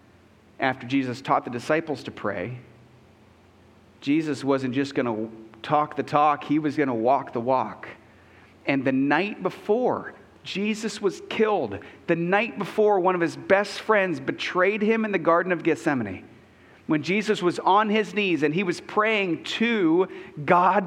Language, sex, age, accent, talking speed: English, male, 40-59, American, 160 wpm